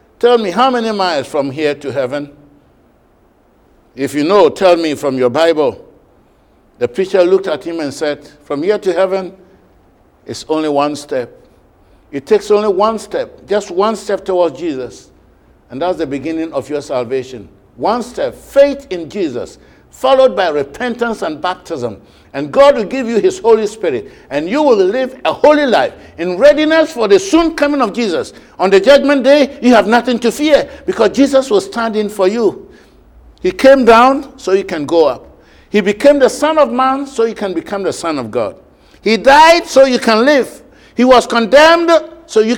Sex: male